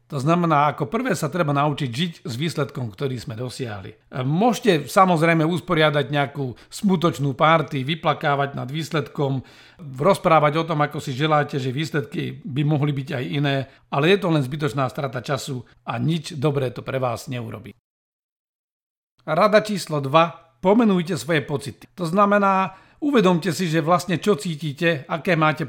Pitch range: 135-165 Hz